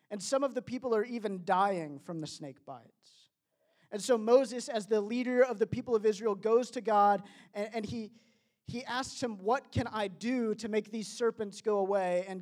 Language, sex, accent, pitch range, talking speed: English, male, American, 170-220 Hz, 210 wpm